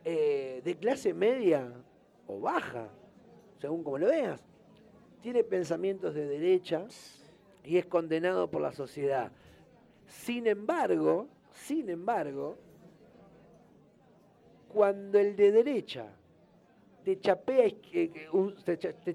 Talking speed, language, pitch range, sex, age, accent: 90 wpm, Spanish, 155-205 Hz, male, 40-59, Argentinian